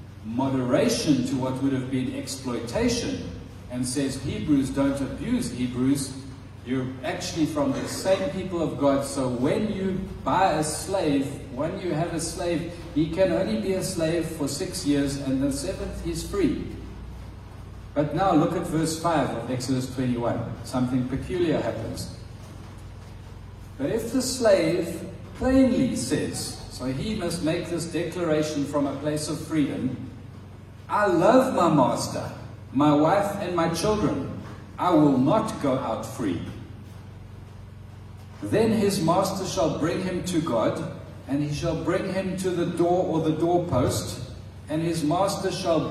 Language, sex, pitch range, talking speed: English, male, 115-165 Hz, 150 wpm